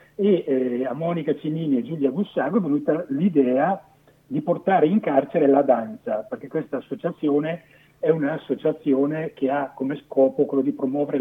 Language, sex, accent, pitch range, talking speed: Italian, male, native, 135-175 Hz, 155 wpm